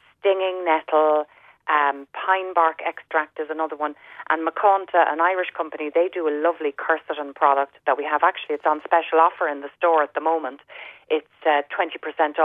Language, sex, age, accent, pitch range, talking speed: English, female, 30-49, Irish, 145-170 Hz, 175 wpm